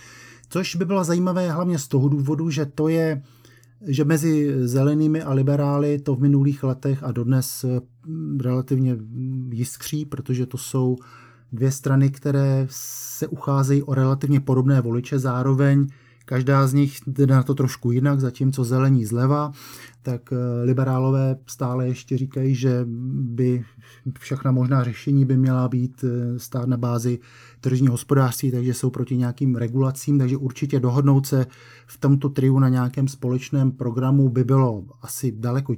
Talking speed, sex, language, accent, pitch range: 145 wpm, male, Czech, native, 125-145 Hz